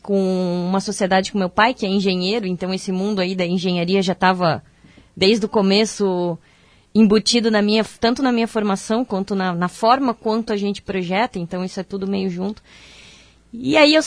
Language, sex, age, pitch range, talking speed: Portuguese, female, 20-39, 195-235 Hz, 190 wpm